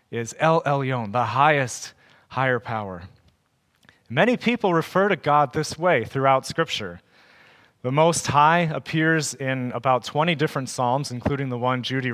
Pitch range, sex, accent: 125-155 Hz, male, American